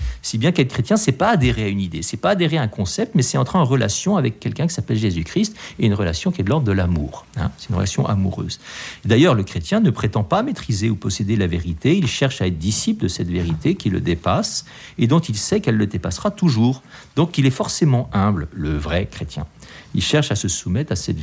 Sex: male